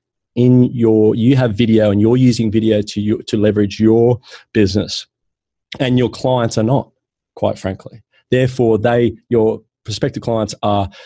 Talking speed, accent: 150 wpm, Australian